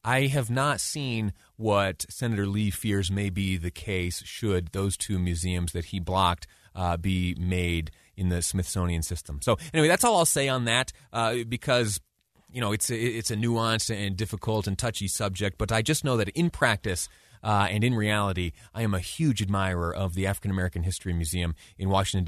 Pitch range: 90-120 Hz